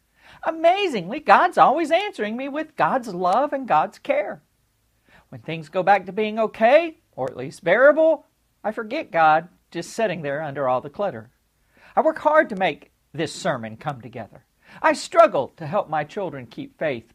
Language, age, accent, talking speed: English, 50-69, American, 170 wpm